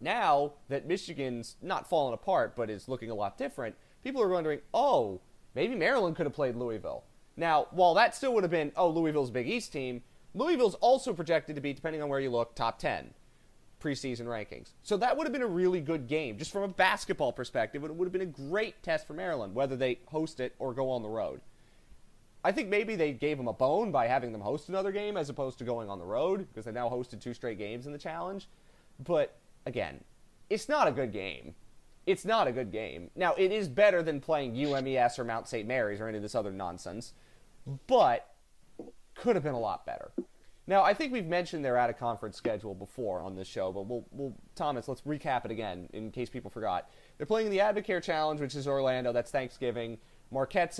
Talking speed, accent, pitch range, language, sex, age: 220 wpm, American, 120-175 Hz, English, male, 30-49